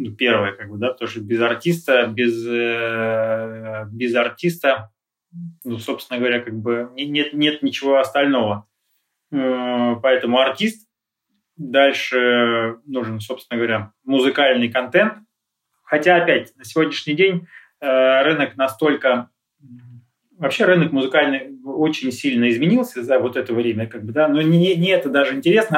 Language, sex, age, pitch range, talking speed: Russian, male, 20-39, 115-145 Hz, 125 wpm